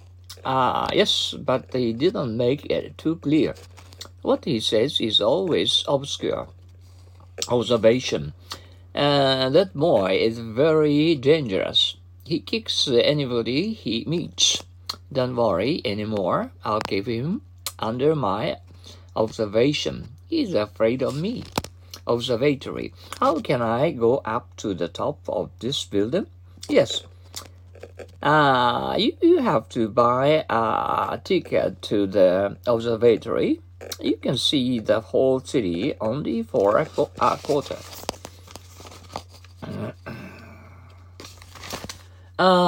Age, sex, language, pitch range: 50-69, male, Japanese, 90-130 Hz